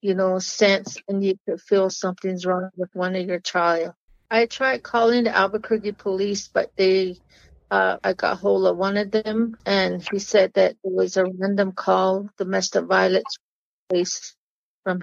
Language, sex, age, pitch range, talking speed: English, female, 50-69, 180-200 Hz, 170 wpm